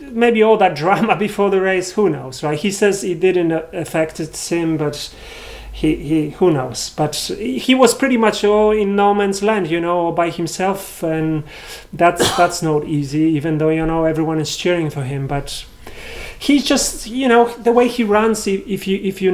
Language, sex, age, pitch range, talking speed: English, male, 30-49, 155-195 Hz, 190 wpm